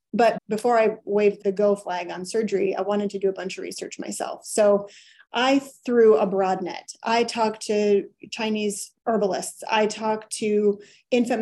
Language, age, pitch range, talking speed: English, 30-49, 195-230 Hz, 175 wpm